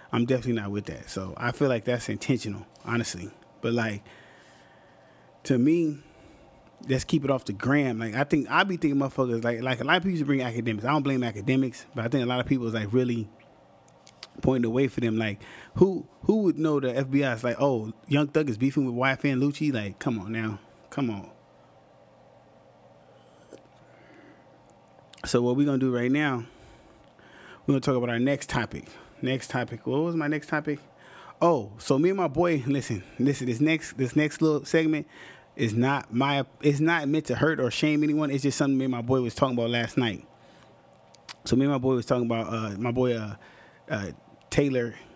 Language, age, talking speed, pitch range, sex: English, 20-39, 205 wpm, 115-145 Hz, male